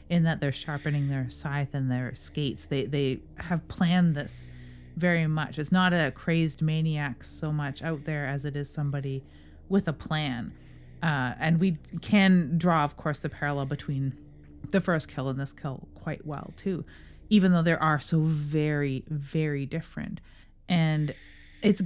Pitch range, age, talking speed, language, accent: 145-180 Hz, 30-49, 165 wpm, English, American